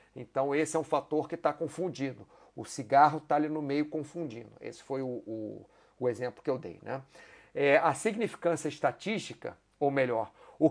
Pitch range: 135-170 Hz